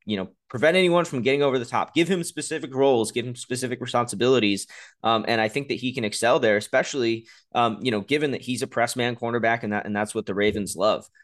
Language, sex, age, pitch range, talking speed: English, male, 20-39, 105-140 Hz, 240 wpm